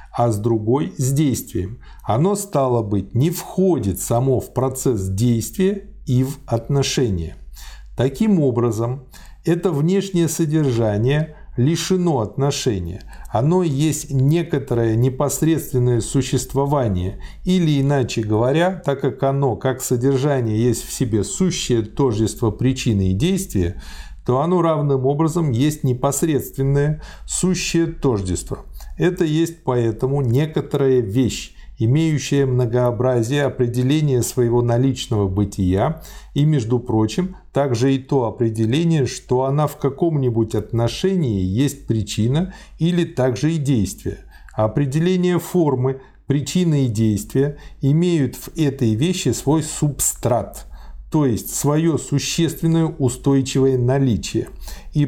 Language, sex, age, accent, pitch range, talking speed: Russian, male, 50-69, native, 120-155 Hz, 110 wpm